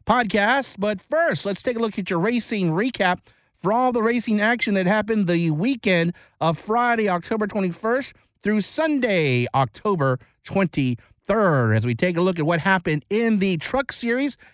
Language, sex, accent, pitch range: English, male, American, 160-220 Hz